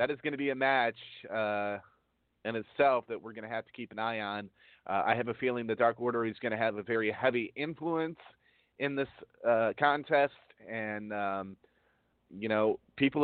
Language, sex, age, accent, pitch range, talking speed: English, male, 30-49, American, 105-135 Hz, 205 wpm